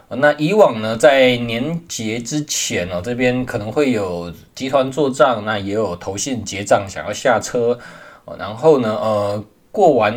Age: 20-39